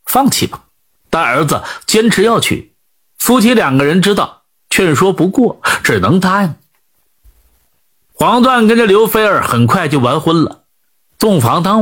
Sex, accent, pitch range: male, native, 155-230 Hz